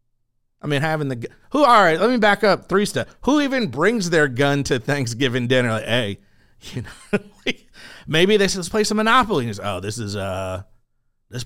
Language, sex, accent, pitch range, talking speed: English, male, American, 115-165 Hz, 195 wpm